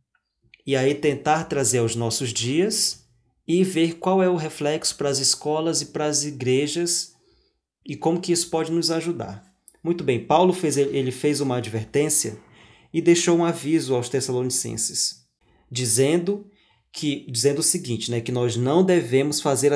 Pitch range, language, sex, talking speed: 125-160 Hz, Portuguese, male, 155 wpm